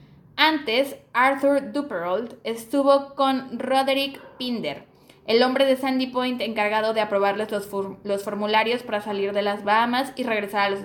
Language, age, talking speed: Spanish, 10-29, 145 wpm